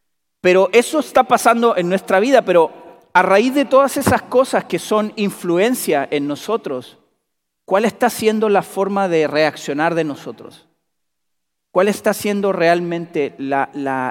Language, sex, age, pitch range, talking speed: Spanish, male, 40-59, 145-205 Hz, 140 wpm